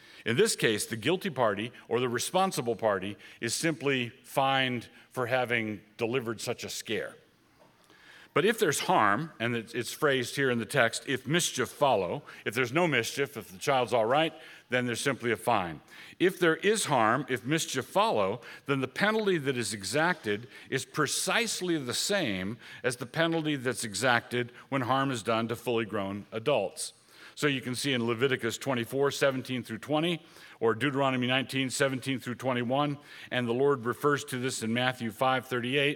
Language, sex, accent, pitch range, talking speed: English, male, American, 115-145 Hz, 170 wpm